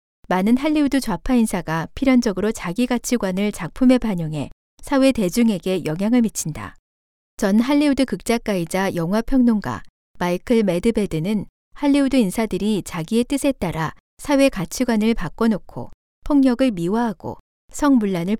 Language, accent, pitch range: Korean, native, 180-250 Hz